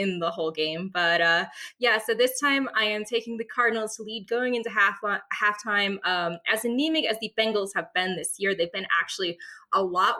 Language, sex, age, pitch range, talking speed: English, female, 20-39, 170-225 Hz, 210 wpm